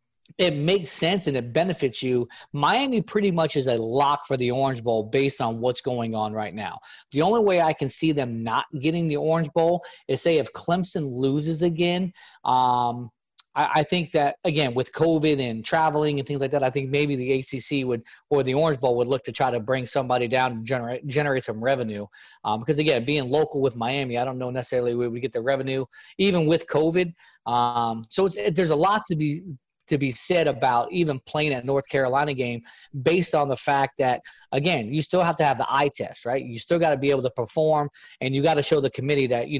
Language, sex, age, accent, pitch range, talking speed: English, male, 30-49, American, 125-160 Hz, 225 wpm